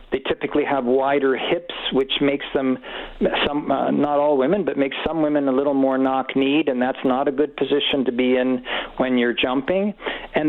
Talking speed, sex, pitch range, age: 195 wpm, male, 130-150 Hz, 50-69